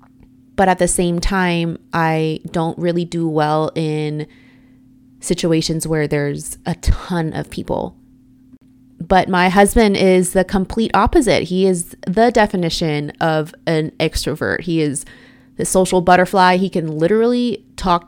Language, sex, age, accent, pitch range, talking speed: English, female, 20-39, American, 155-185 Hz, 135 wpm